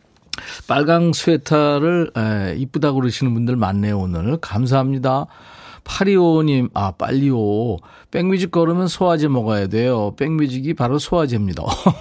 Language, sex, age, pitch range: Korean, male, 40-59, 115-160 Hz